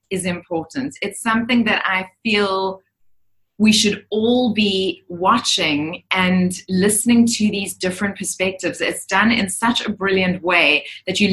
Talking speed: 145 wpm